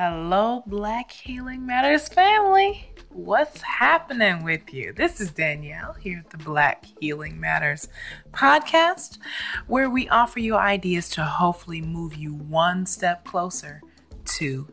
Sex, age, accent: female, 20-39, American